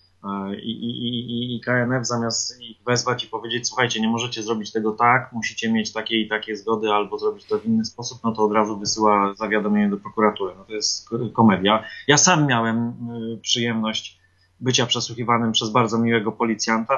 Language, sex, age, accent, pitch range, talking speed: Polish, male, 30-49, native, 110-135 Hz, 180 wpm